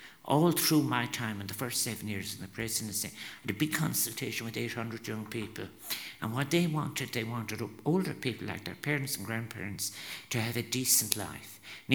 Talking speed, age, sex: 200 wpm, 60-79, male